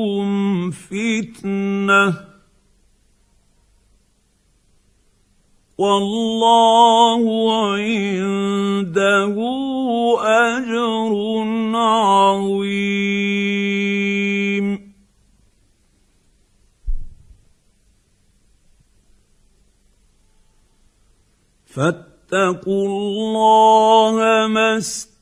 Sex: male